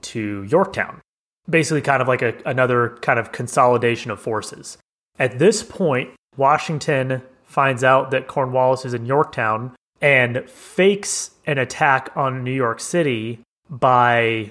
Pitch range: 115-135 Hz